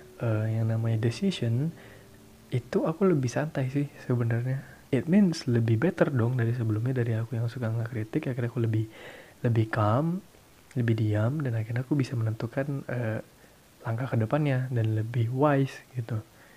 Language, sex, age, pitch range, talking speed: Indonesian, male, 20-39, 115-140 Hz, 150 wpm